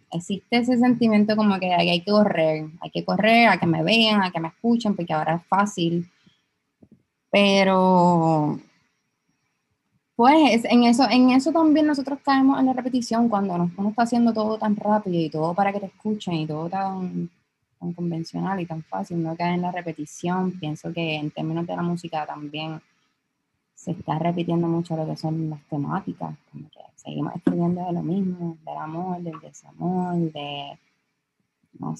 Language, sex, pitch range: Spanish, female, 160-205 Hz